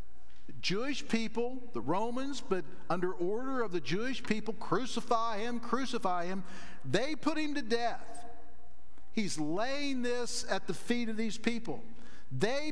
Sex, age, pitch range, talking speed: male, 50-69, 175-235 Hz, 140 wpm